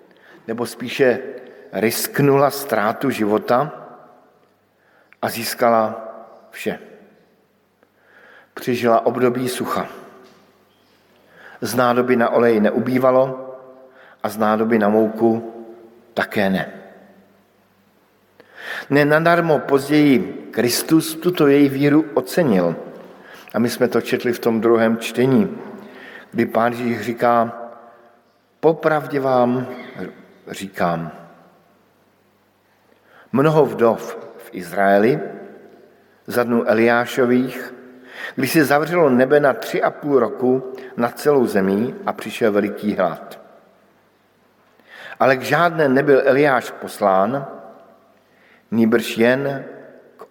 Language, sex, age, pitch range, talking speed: Slovak, male, 50-69, 115-135 Hz, 95 wpm